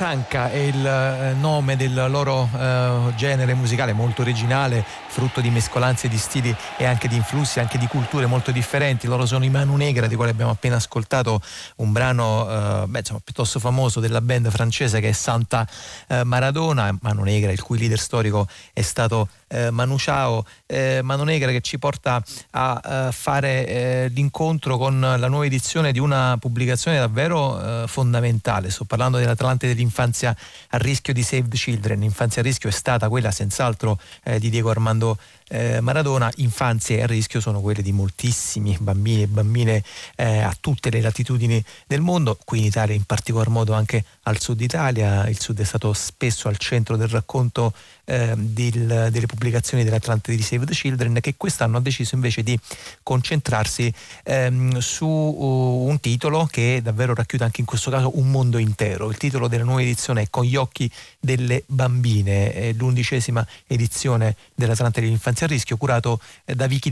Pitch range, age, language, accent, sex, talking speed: 110-130 Hz, 30-49, Italian, native, male, 170 wpm